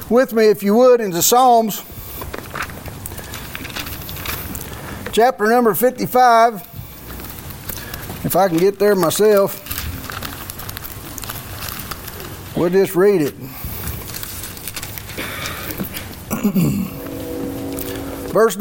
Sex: male